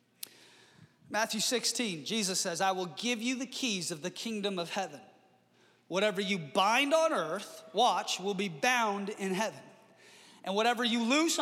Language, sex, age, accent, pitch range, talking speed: English, male, 30-49, American, 210-305 Hz, 160 wpm